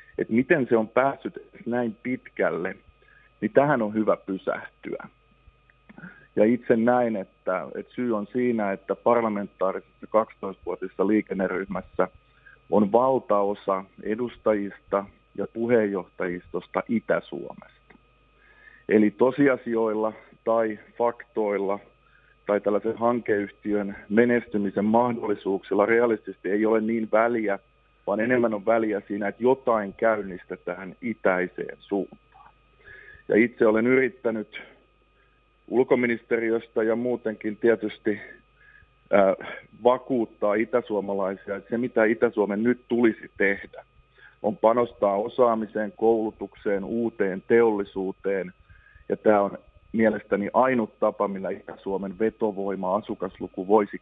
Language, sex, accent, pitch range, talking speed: Finnish, male, native, 100-120 Hz, 100 wpm